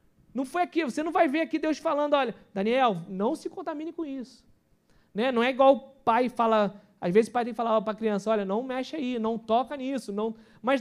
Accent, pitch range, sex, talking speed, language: Brazilian, 220-300 Hz, male, 240 wpm, Portuguese